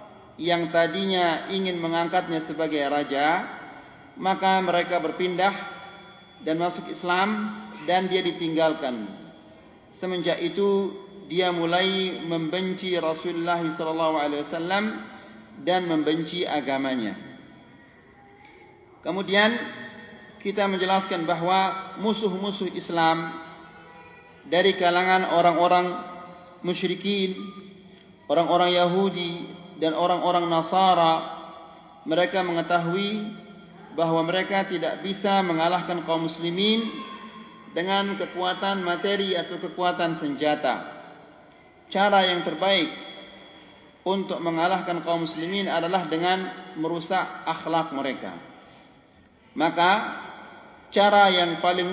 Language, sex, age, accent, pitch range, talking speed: English, male, 40-59, Indonesian, 165-190 Hz, 80 wpm